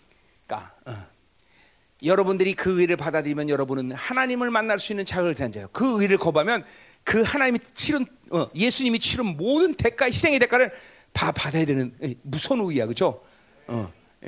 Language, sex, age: Korean, male, 40-59